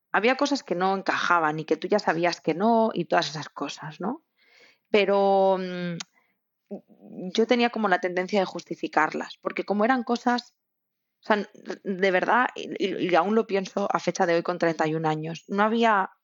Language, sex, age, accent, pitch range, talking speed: Spanish, female, 20-39, Spanish, 170-210 Hz, 175 wpm